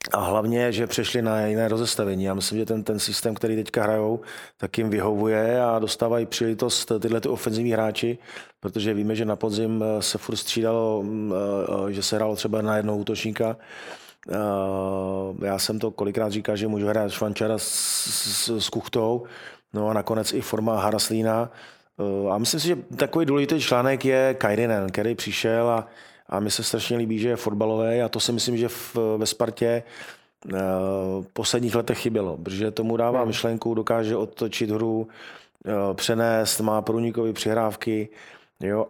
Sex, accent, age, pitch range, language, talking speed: male, native, 30-49, 105-115 Hz, Czech, 155 wpm